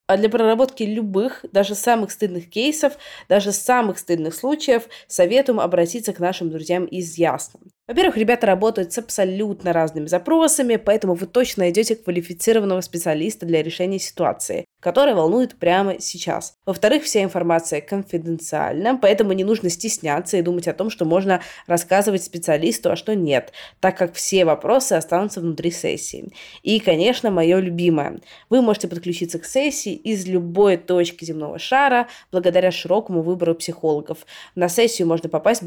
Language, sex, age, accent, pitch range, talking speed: Russian, female, 20-39, native, 170-225 Hz, 145 wpm